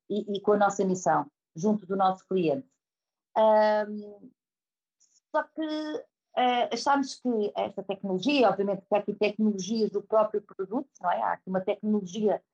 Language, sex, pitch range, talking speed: Portuguese, female, 180-210 Hz, 155 wpm